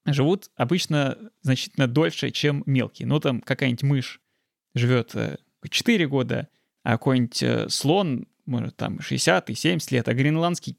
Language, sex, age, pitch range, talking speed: Russian, male, 20-39, 130-160 Hz, 120 wpm